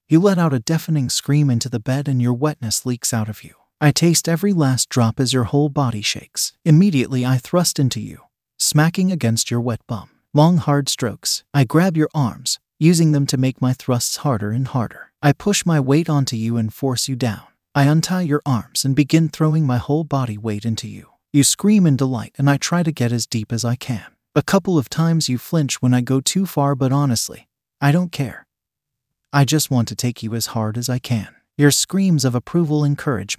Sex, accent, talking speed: male, American, 215 wpm